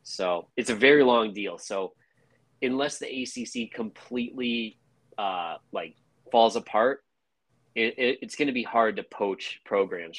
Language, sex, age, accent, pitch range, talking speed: English, male, 20-39, American, 95-125 Hz, 140 wpm